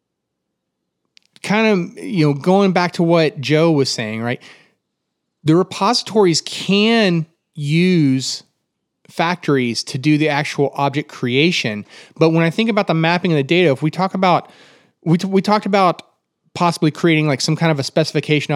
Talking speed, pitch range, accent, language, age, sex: 160 wpm, 125-165 Hz, American, English, 30-49, male